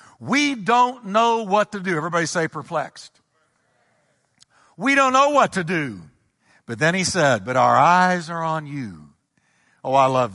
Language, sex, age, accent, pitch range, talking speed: English, male, 60-79, American, 160-215 Hz, 160 wpm